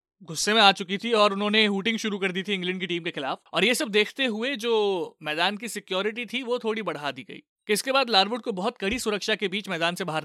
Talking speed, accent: 250 wpm, native